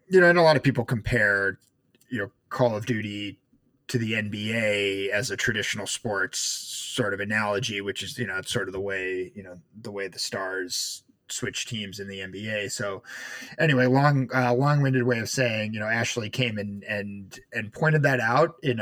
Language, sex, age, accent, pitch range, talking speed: English, male, 30-49, American, 100-130 Hz, 205 wpm